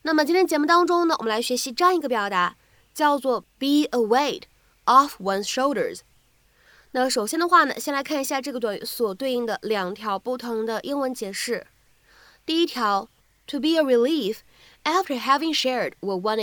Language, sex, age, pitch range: Chinese, female, 20-39, 220-300 Hz